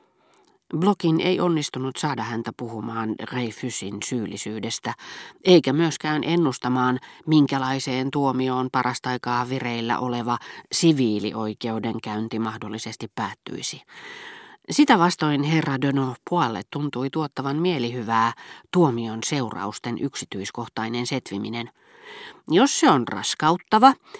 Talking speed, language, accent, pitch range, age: 90 wpm, Finnish, native, 115-160 Hz, 40-59